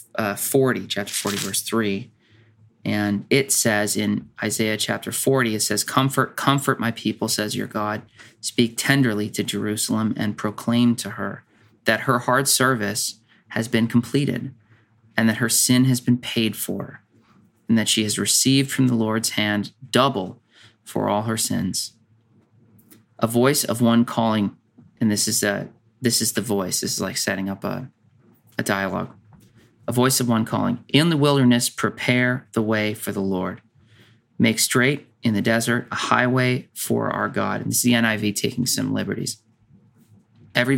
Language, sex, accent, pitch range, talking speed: English, male, American, 105-120 Hz, 165 wpm